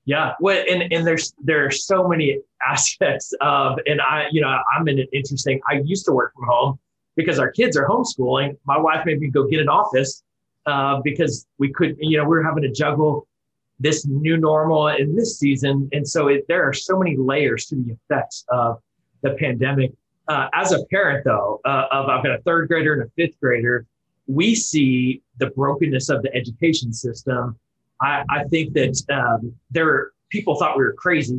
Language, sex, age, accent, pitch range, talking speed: English, male, 30-49, American, 130-155 Hz, 195 wpm